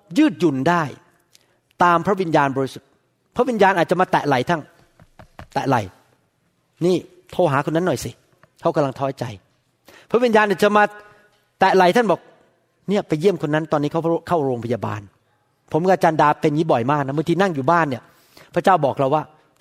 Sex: male